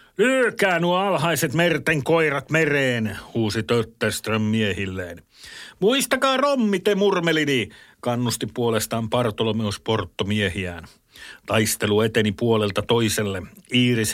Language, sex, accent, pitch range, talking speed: Finnish, male, native, 105-120 Hz, 90 wpm